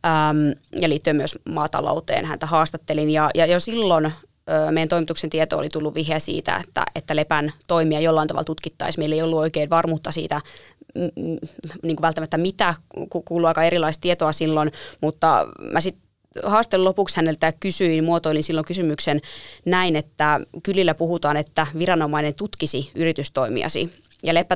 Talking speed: 140 wpm